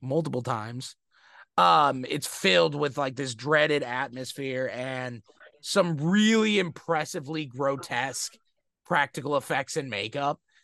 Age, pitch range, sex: 30-49, 125-160 Hz, male